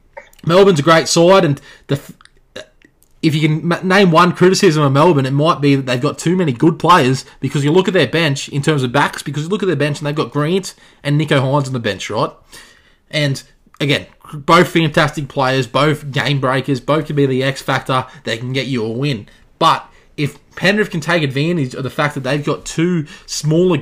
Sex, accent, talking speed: male, Australian, 210 wpm